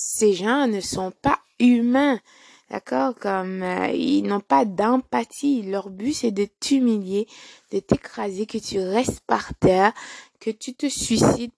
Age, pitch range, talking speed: 20-39, 190-230 Hz, 150 wpm